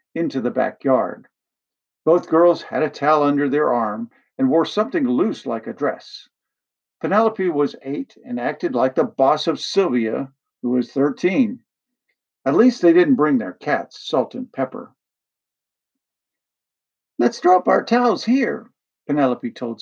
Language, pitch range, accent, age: English, 160-255 Hz, American, 50-69